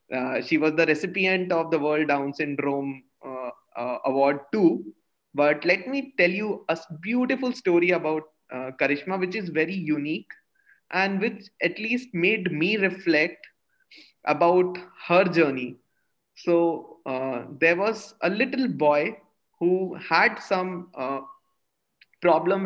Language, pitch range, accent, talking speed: English, 155-210 Hz, Indian, 135 wpm